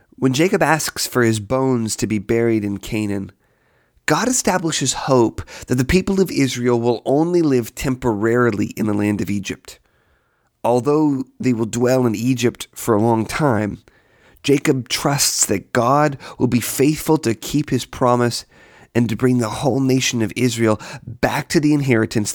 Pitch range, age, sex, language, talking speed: 110-140 Hz, 30-49, male, English, 165 wpm